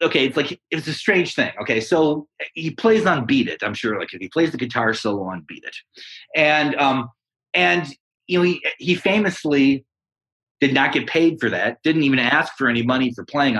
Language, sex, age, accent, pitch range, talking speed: English, male, 30-49, American, 125-180 Hz, 210 wpm